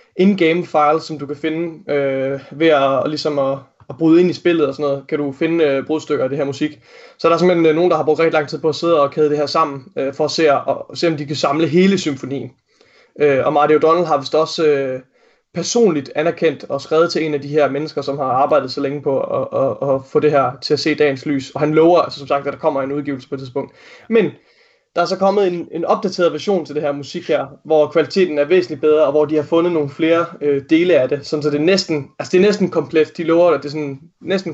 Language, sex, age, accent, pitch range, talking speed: Danish, male, 20-39, native, 140-165 Hz, 275 wpm